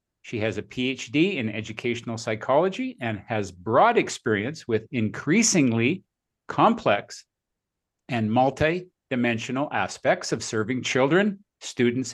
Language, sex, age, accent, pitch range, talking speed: English, male, 50-69, American, 110-170 Hz, 105 wpm